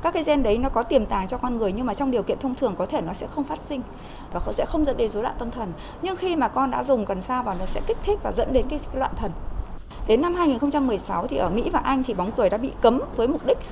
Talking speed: 305 wpm